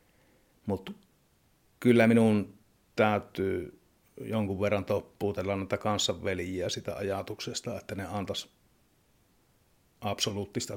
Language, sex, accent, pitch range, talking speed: Finnish, male, native, 95-110 Hz, 85 wpm